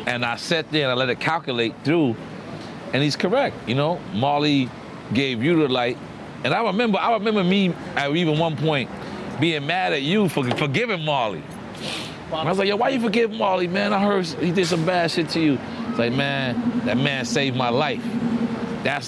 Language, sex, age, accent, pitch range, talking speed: English, male, 40-59, American, 125-165 Hz, 210 wpm